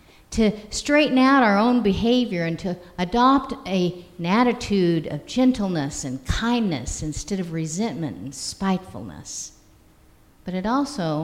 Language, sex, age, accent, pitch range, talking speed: English, female, 50-69, American, 175-225 Hz, 125 wpm